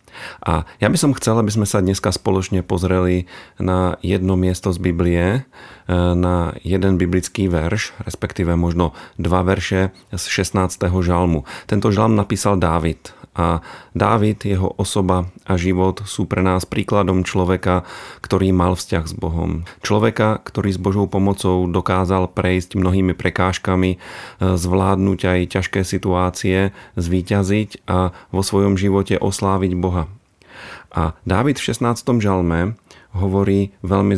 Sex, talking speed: male, 130 wpm